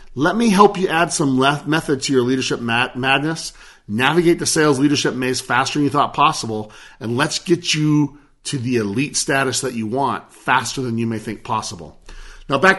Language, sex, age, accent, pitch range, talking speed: English, male, 40-59, American, 130-175 Hz, 195 wpm